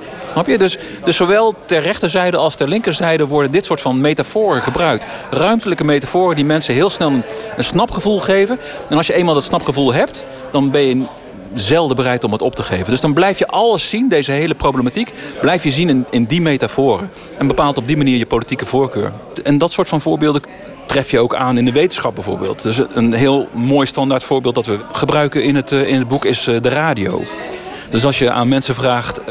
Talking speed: 205 wpm